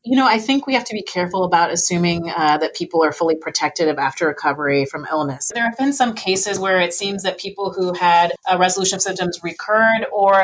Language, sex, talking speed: English, female, 230 wpm